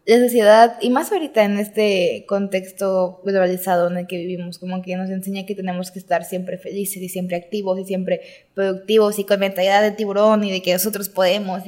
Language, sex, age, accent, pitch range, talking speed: Spanish, female, 20-39, Mexican, 190-230 Hz, 200 wpm